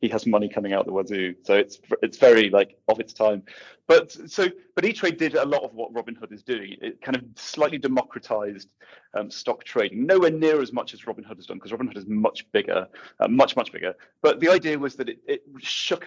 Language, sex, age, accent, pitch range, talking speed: English, male, 30-49, British, 105-150 Hz, 225 wpm